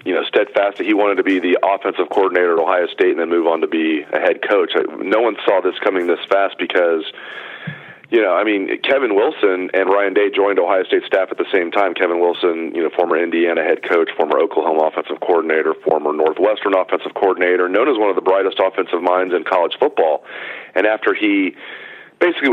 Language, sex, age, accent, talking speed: English, male, 40-59, American, 210 wpm